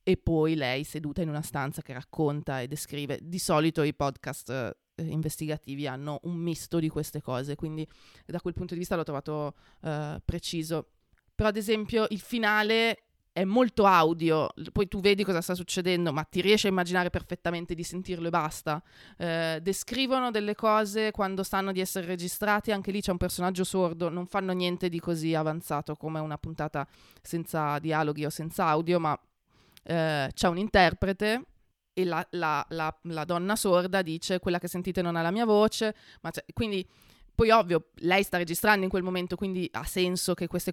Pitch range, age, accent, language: 160-210 Hz, 20-39, native, Italian